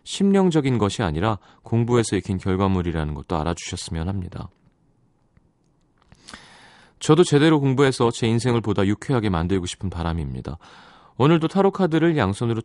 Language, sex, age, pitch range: Korean, male, 30-49, 95-145 Hz